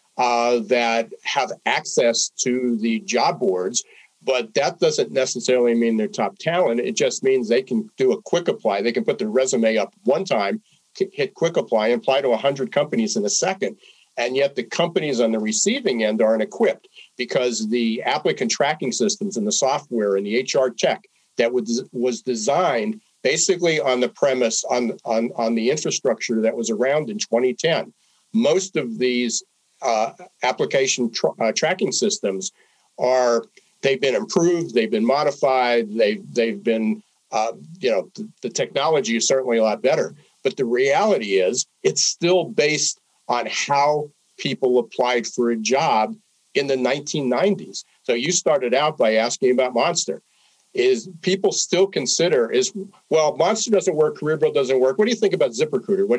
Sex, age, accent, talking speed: male, 50-69, American, 170 wpm